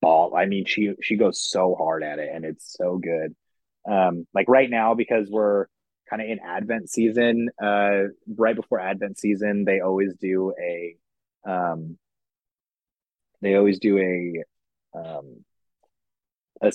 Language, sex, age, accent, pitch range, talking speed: English, male, 20-39, American, 90-110 Hz, 145 wpm